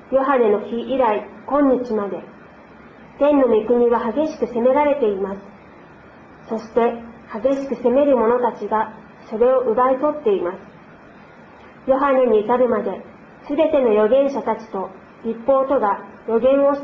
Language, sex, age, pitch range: Japanese, female, 40-59, 225-275 Hz